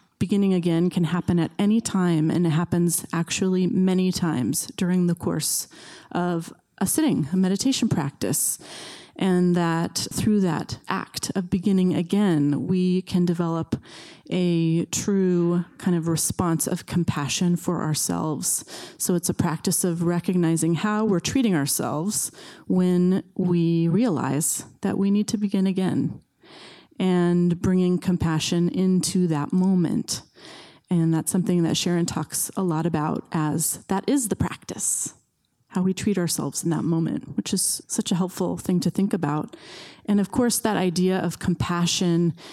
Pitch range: 165-190 Hz